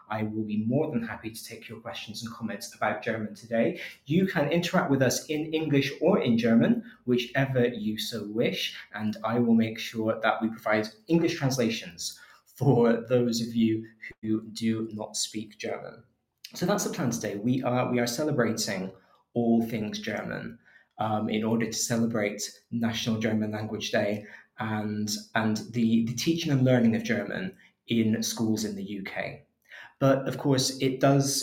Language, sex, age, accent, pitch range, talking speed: English, male, 20-39, British, 105-120 Hz, 170 wpm